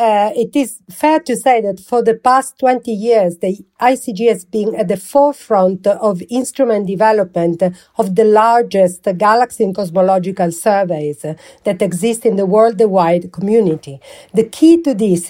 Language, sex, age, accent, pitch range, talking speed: English, female, 50-69, Italian, 190-230 Hz, 155 wpm